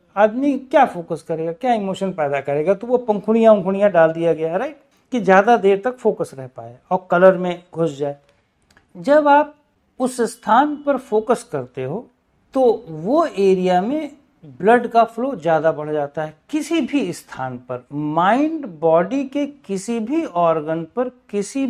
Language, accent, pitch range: Hindi, native, 165-255 Hz